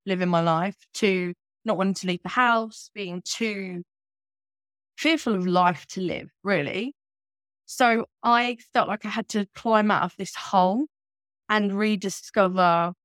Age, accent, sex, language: 20-39, British, female, English